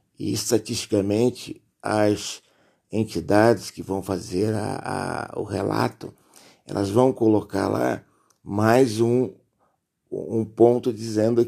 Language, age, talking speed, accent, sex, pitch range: Portuguese, 60-79, 95 wpm, Brazilian, male, 100-120 Hz